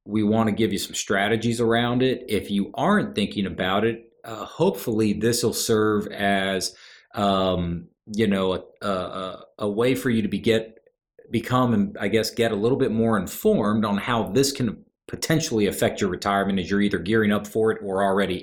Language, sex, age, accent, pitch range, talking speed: English, male, 40-59, American, 100-125 Hz, 190 wpm